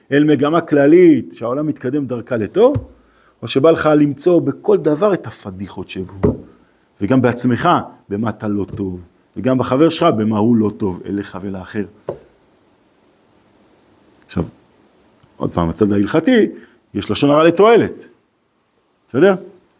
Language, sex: Hebrew, male